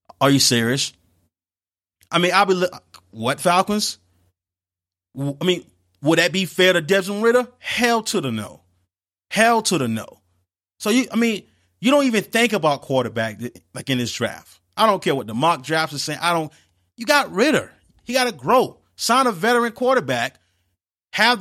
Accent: American